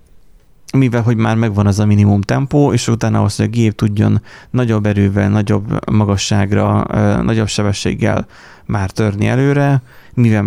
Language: Hungarian